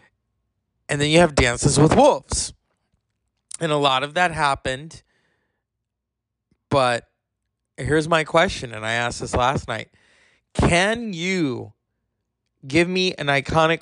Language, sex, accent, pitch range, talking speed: English, male, American, 120-165 Hz, 125 wpm